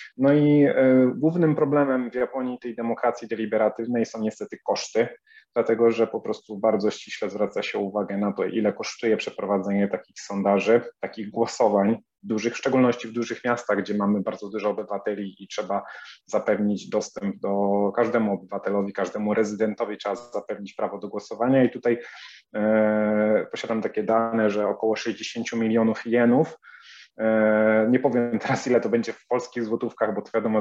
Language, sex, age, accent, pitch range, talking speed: Polish, male, 30-49, native, 105-120 Hz, 155 wpm